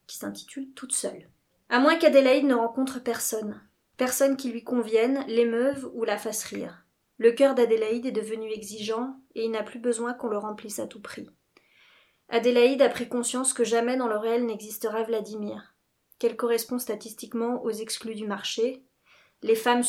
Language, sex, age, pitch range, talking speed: French, female, 30-49, 225-250 Hz, 165 wpm